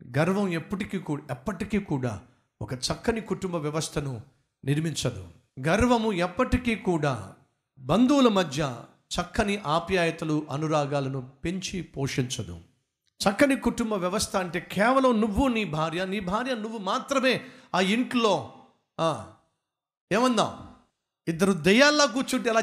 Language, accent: Telugu, native